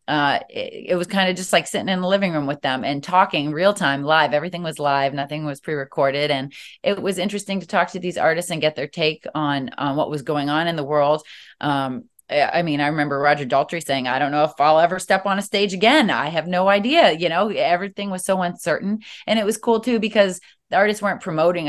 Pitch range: 140-180 Hz